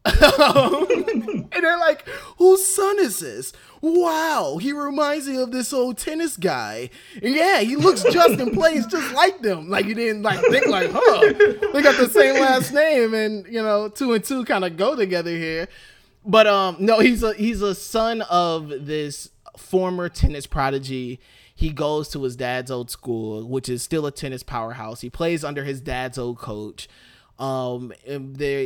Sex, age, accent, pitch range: male, 20-39, American, 135-220 Hz